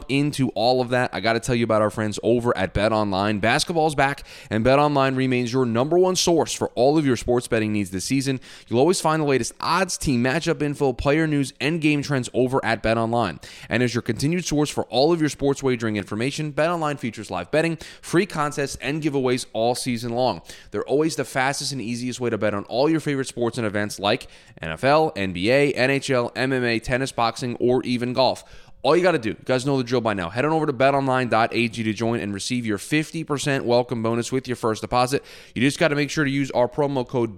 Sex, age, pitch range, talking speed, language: male, 20-39, 110-140 Hz, 230 wpm, English